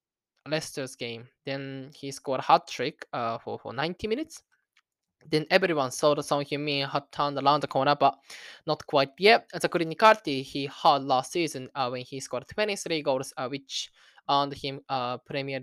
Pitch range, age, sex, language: 135-160 Hz, 20-39, male, Japanese